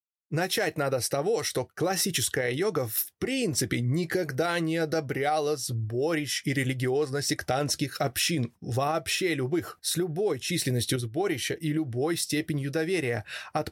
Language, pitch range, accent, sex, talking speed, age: Russian, 135-160 Hz, native, male, 120 wpm, 20-39